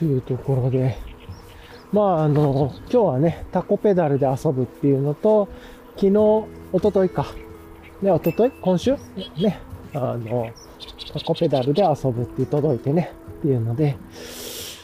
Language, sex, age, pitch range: Japanese, male, 20-39, 125-205 Hz